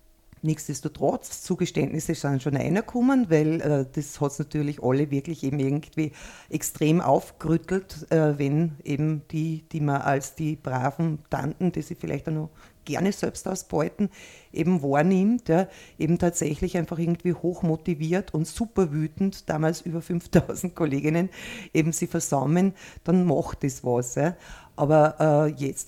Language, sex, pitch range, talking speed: German, female, 155-180 Hz, 145 wpm